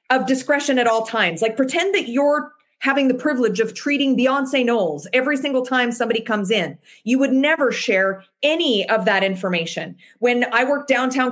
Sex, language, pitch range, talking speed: female, English, 205-265 Hz, 180 wpm